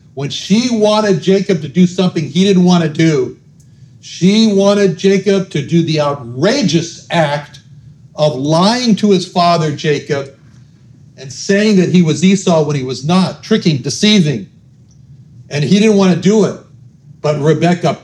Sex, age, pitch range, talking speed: male, 60-79, 135-170 Hz, 150 wpm